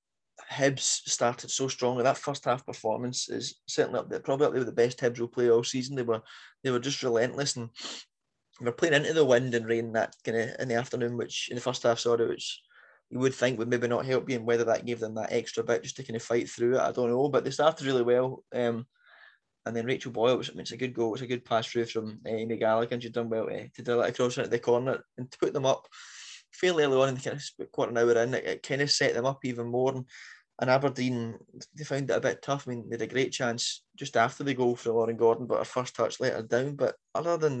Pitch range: 115-130 Hz